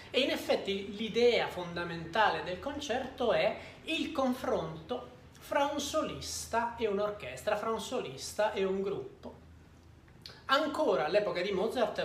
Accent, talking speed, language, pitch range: native, 125 wpm, Italian, 180-260 Hz